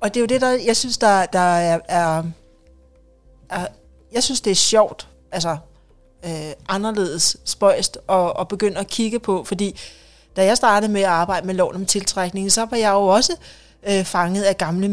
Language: Danish